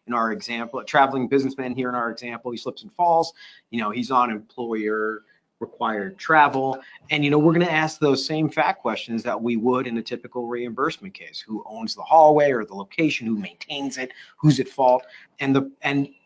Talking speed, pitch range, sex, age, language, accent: 205 wpm, 110-145 Hz, male, 40-59, English, American